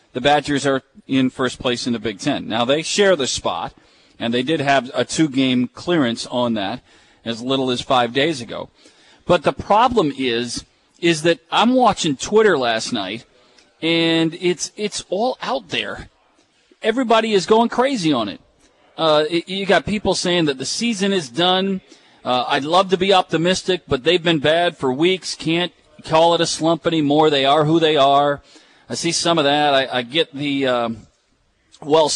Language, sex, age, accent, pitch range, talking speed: English, male, 40-59, American, 130-185 Hz, 185 wpm